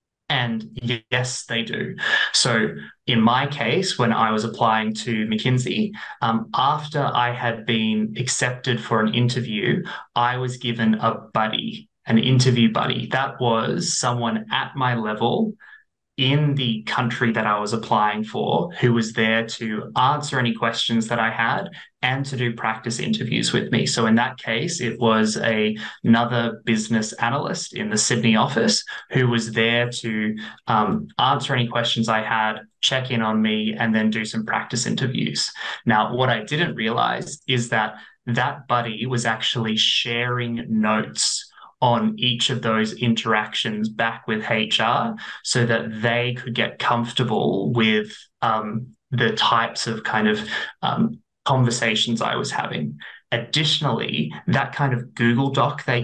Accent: Australian